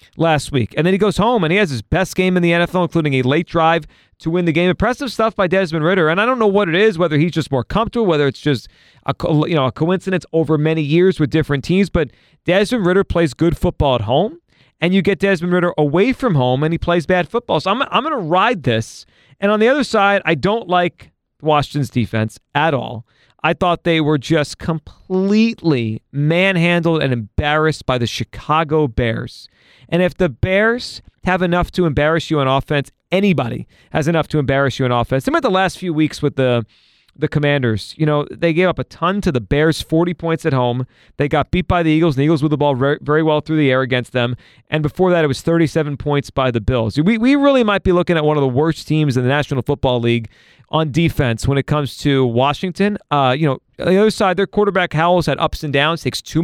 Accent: American